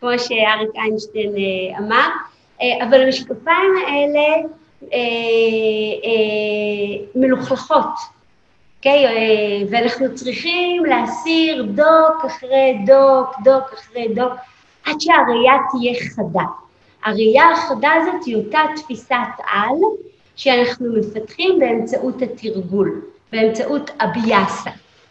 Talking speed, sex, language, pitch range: 95 wpm, female, Hebrew, 220-300 Hz